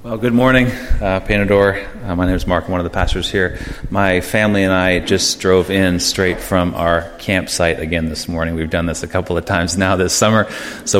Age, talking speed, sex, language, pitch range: 30-49, 225 wpm, male, English, 85-105 Hz